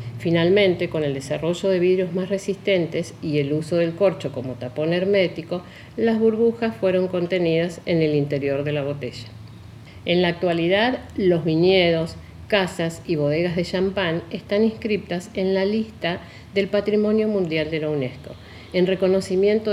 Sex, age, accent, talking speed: female, 50-69, Argentinian, 150 wpm